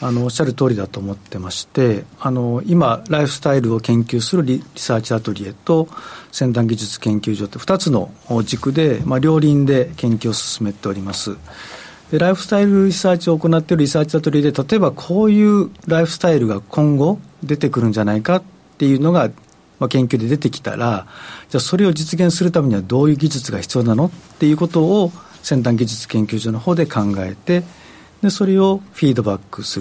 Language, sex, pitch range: Japanese, male, 115-170 Hz